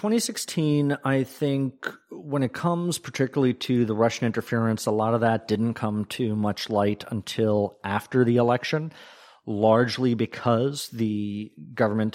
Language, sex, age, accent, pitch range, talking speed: English, male, 40-59, American, 105-120 Hz, 140 wpm